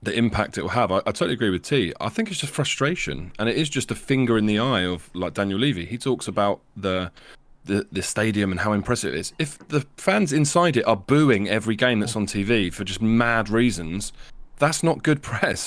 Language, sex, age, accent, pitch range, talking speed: English, male, 20-39, British, 95-125 Hz, 235 wpm